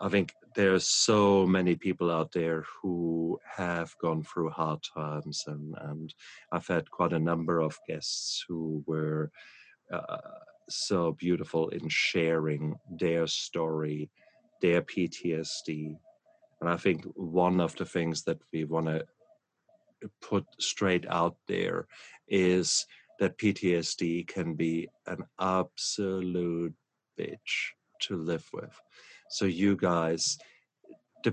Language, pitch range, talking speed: English, 80-95 Hz, 125 wpm